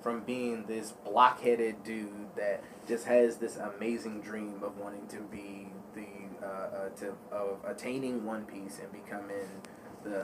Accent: American